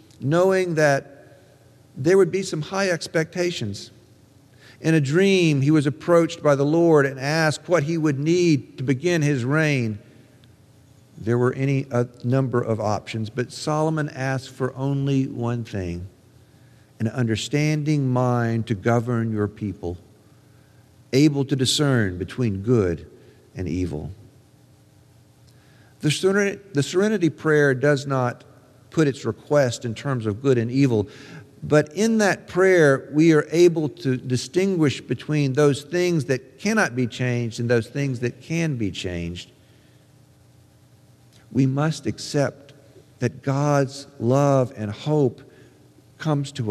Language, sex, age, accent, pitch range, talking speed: English, male, 50-69, American, 120-150 Hz, 135 wpm